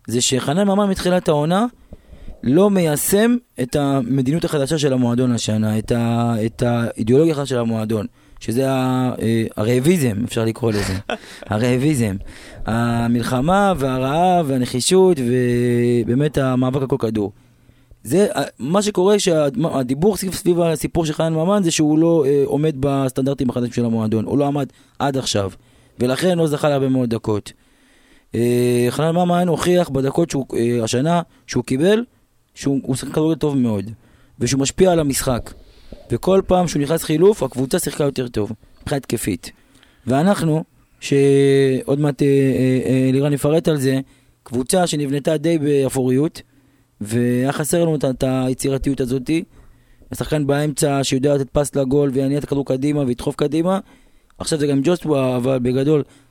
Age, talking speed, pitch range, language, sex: 20-39, 135 wpm, 125-155 Hz, Hebrew, male